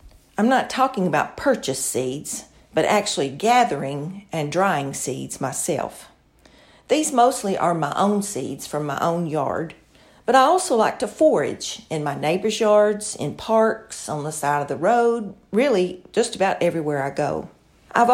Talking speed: 160 wpm